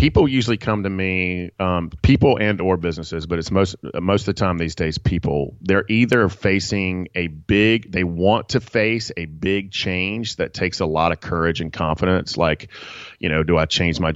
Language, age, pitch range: English, 30-49, 80-100 Hz